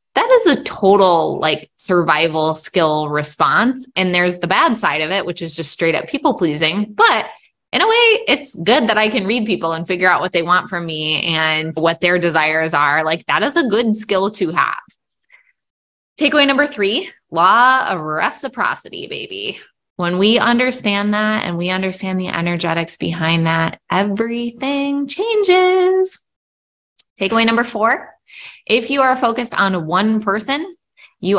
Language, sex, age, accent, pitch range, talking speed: English, female, 20-39, American, 165-230 Hz, 165 wpm